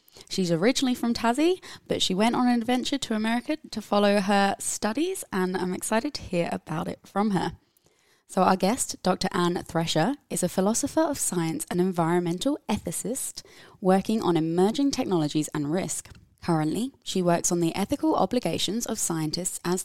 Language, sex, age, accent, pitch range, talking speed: English, female, 20-39, British, 165-225 Hz, 165 wpm